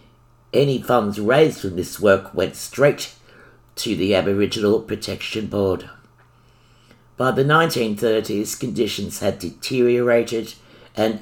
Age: 60-79